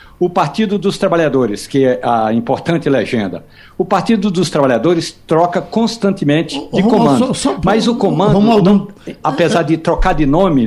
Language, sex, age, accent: Portuguese, male, 60-79, Brazilian